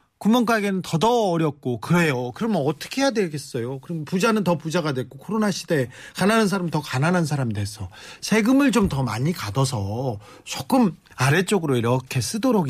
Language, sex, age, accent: Korean, male, 40-59, native